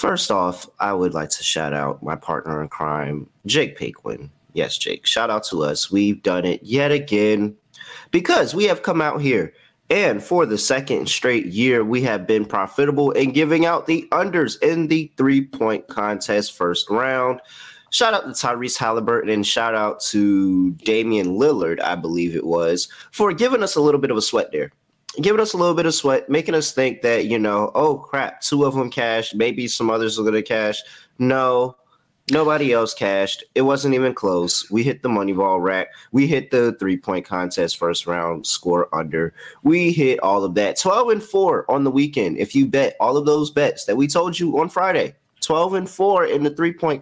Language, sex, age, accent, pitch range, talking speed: English, male, 30-49, American, 100-145 Hz, 200 wpm